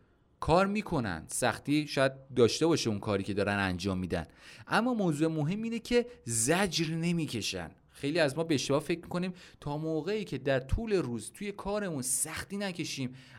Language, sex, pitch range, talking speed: Persian, male, 115-170 Hz, 155 wpm